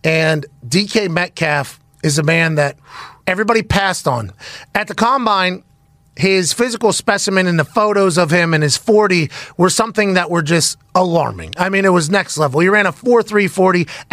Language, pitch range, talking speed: English, 170-220 Hz, 170 wpm